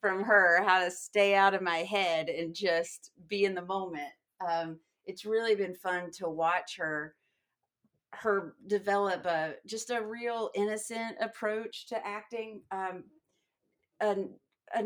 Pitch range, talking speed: 175-205 Hz, 140 wpm